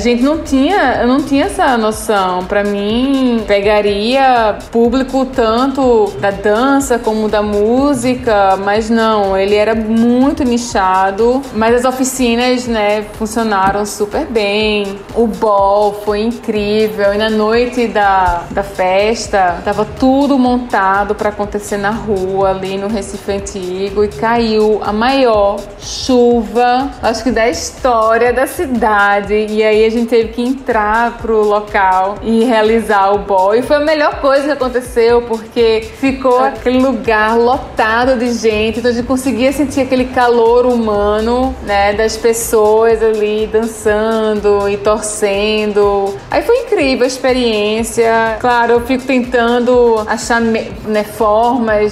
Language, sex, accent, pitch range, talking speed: Portuguese, female, Brazilian, 210-250 Hz, 135 wpm